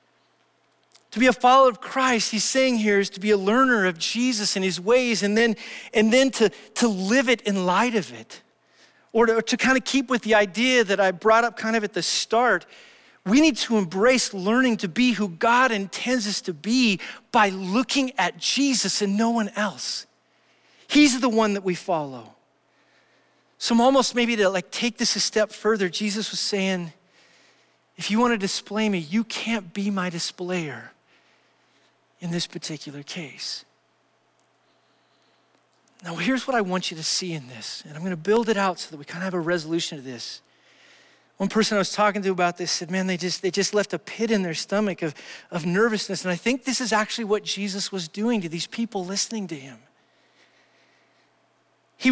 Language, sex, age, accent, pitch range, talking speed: English, male, 40-59, American, 185-240 Hz, 195 wpm